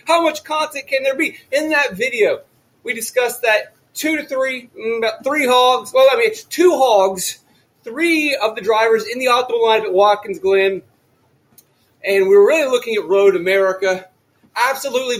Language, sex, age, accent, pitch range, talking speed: English, male, 30-49, American, 205-280 Hz, 175 wpm